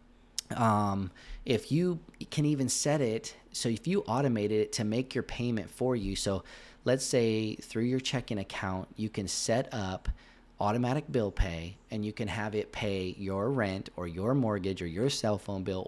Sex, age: male, 30-49